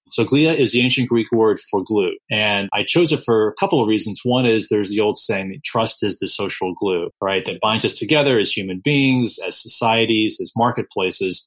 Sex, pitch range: male, 105-130 Hz